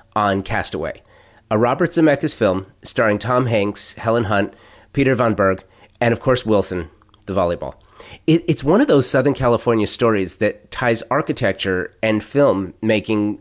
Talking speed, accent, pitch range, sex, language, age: 150 wpm, American, 100-125 Hz, male, English, 30-49